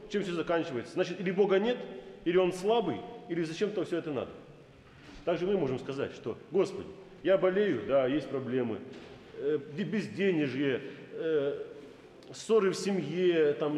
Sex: male